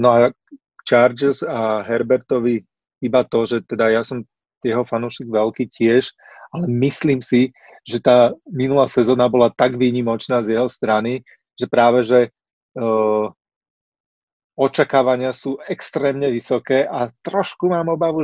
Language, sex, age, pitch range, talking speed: Slovak, male, 30-49, 115-135 Hz, 130 wpm